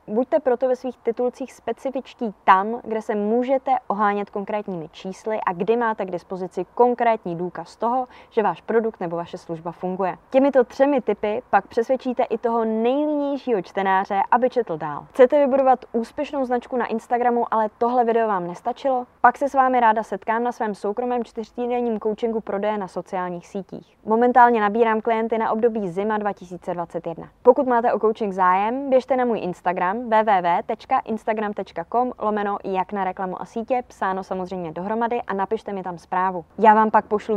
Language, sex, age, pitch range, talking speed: Czech, female, 20-39, 195-250 Hz, 160 wpm